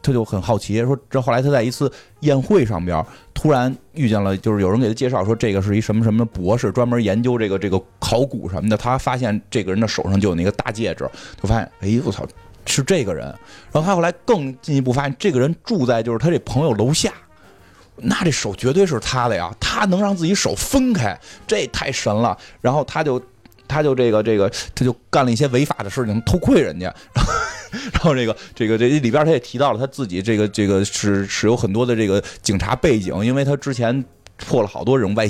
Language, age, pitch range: Chinese, 20-39, 105-135 Hz